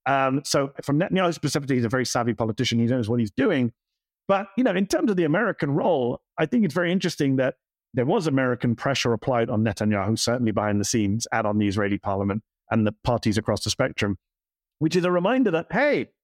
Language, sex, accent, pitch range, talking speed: English, male, British, 120-190 Hz, 215 wpm